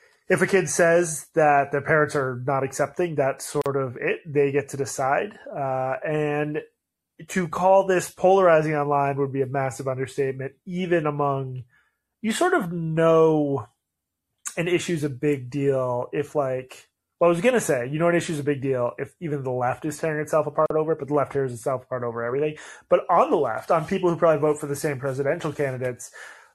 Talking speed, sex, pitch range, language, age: 205 wpm, male, 135-165 Hz, English, 30-49